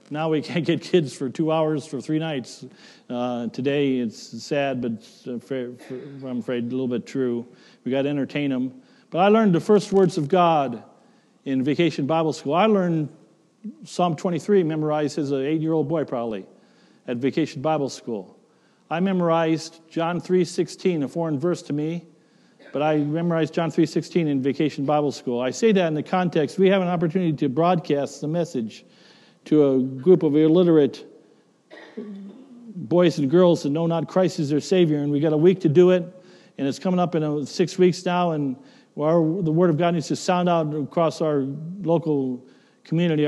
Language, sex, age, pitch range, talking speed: English, male, 50-69, 140-175 Hz, 180 wpm